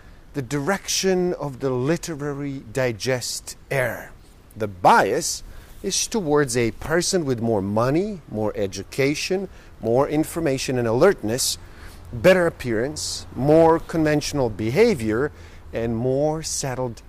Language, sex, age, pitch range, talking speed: English, male, 50-69, 100-165 Hz, 105 wpm